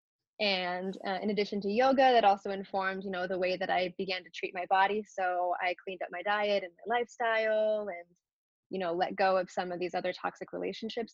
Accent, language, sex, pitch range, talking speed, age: American, English, female, 185-220 Hz, 220 wpm, 20-39